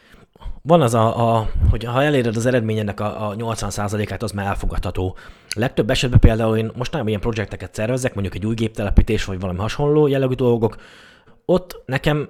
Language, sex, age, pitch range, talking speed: Hungarian, male, 20-39, 100-125 Hz, 175 wpm